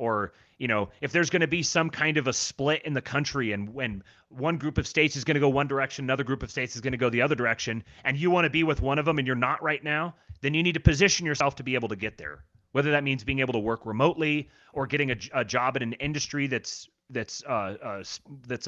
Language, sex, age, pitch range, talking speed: English, male, 30-49, 110-150 Hz, 265 wpm